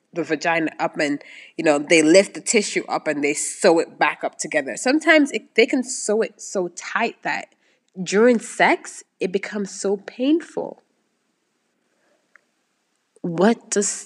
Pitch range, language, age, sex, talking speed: 170-225 Hz, English, 20-39, female, 150 wpm